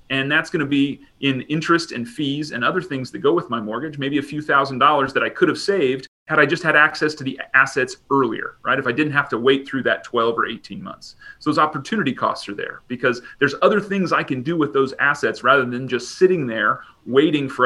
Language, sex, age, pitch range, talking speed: English, male, 30-49, 135-165 Hz, 245 wpm